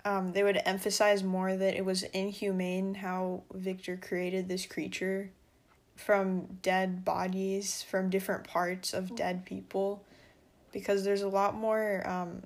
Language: English